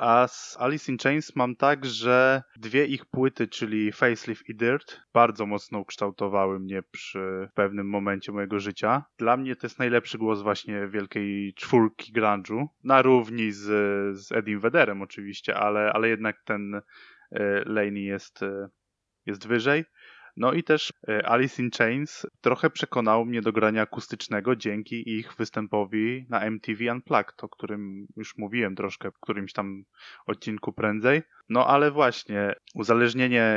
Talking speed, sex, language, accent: 150 wpm, male, Polish, native